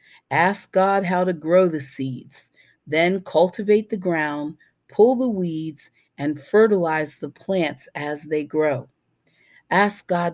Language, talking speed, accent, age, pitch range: English, 135 wpm, American, 50-69, 150-195 Hz